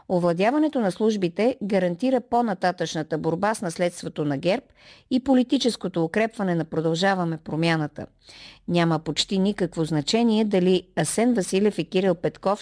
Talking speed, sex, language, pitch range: 125 wpm, female, Bulgarian, 165-215 Hz